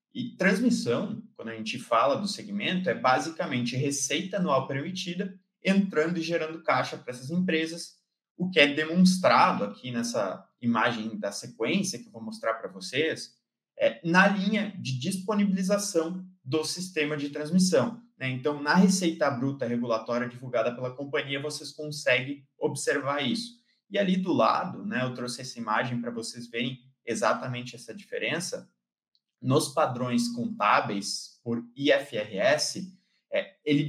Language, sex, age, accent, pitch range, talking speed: Portuguese, male, 20-39, Brazilian, 130-190 Hz, 140 wpm